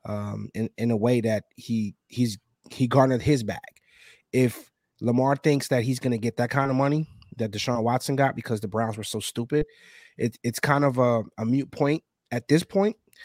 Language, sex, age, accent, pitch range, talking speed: English, male, 20-39, American, 115-140 Hz, 195 wpm